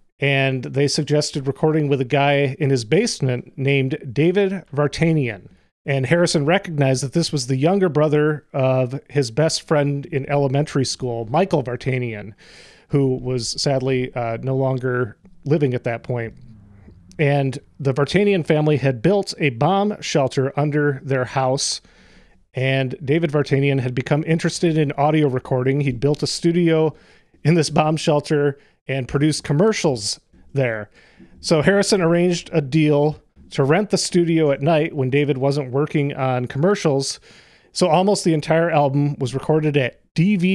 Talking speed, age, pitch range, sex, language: 150 wpm, 30-49, 130-160 Hz, male, English